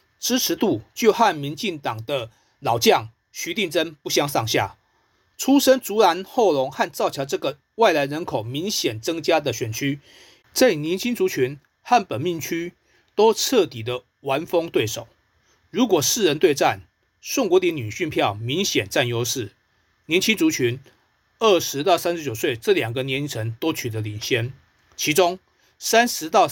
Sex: male